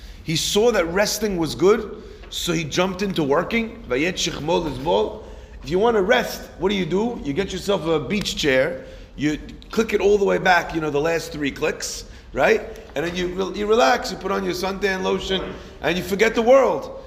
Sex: male